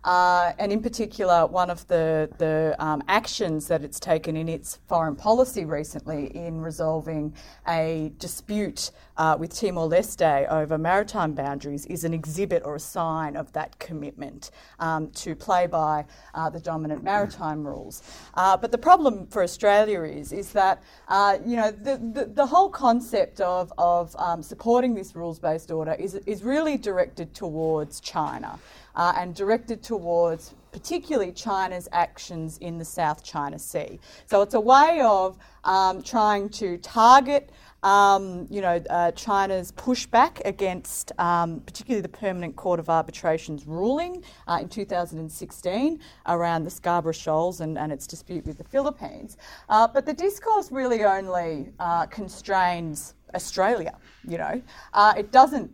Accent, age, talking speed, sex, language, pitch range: Australian, 30-49, 150 wpm, female, English, 160-210 Hz